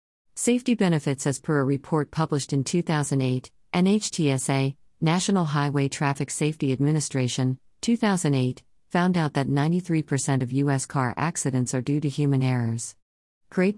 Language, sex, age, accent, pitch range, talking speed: English, female, 50-69, American, 130-160 Hz, 130 wpm